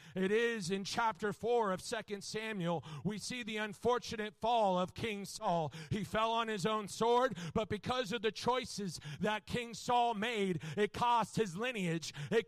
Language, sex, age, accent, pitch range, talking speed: English, male, 40-59, American, 185-240 Hz, 175 wpm